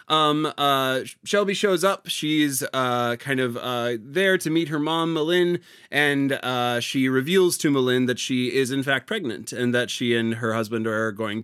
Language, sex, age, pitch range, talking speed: English, male, 30-49, 120-150 Hz, 190 wpm